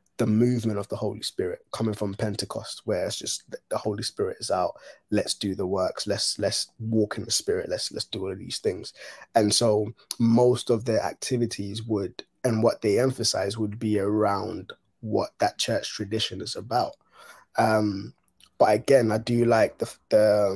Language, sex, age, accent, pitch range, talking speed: English, male, 20-39, British, 105-120 Hz, 180 wpm